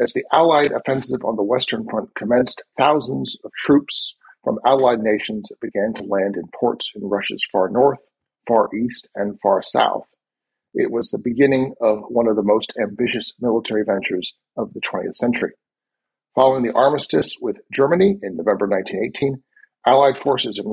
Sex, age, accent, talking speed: male, 50-69, American, 160 wpm